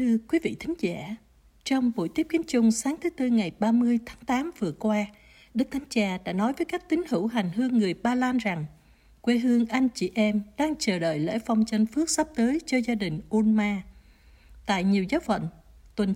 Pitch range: 200-255 Hz